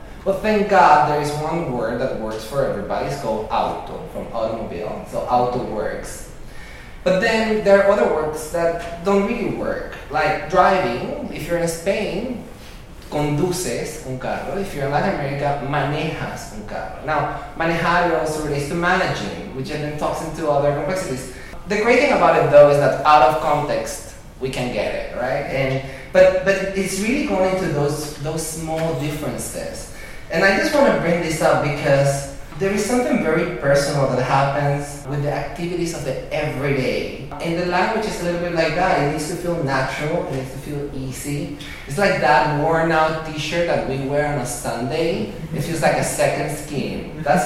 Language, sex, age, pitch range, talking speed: English, male, 20-39, 140-175 Hz, 180 wpm